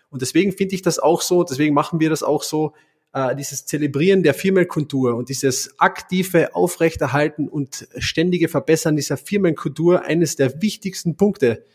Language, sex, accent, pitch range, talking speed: German, male, German, 140-170 Hz, 160 wpm